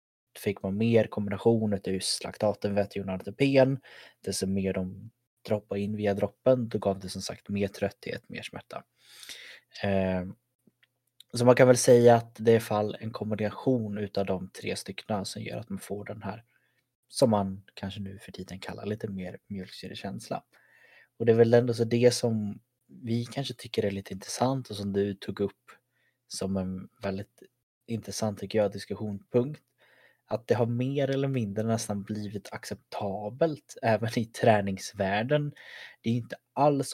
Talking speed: 160 wpm